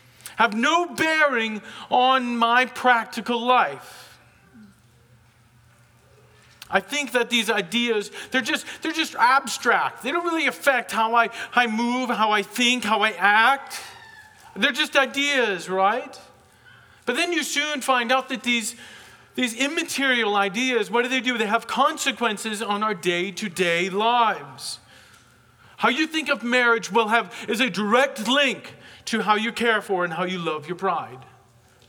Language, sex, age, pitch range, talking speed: English, male, 40-59, 155-250 Hz, 150 wpm